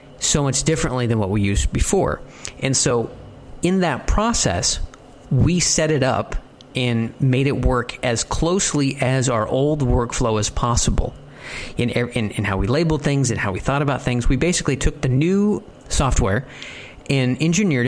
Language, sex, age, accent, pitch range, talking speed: English, male, 40-59, American, 120-145 Hz, 170 wpm